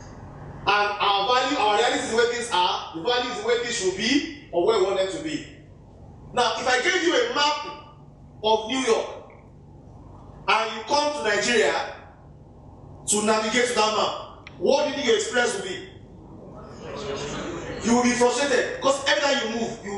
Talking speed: 185 wpm